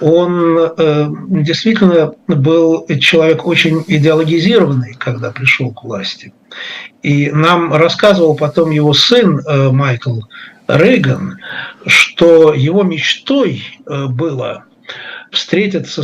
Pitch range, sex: 140-180 Hz, male